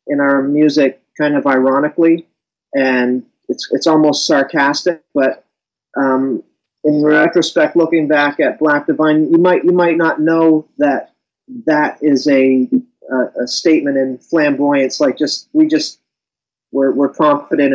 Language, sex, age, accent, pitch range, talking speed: English, male, 30-49, American, 130-155 Hz, 140 wpm